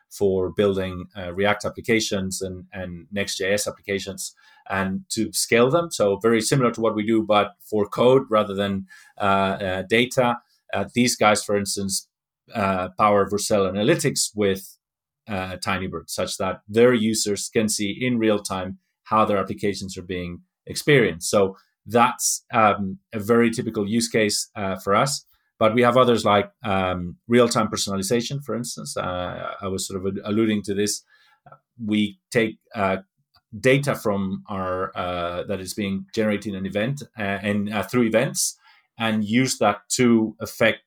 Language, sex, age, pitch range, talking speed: English, male, 30-49, 95-115 Hz, 155 wpm